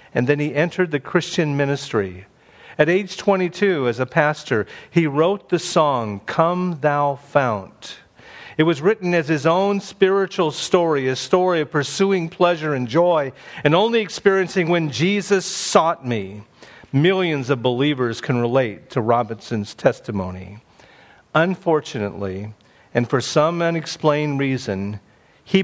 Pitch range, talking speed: 130-180 Hz, 135 wpm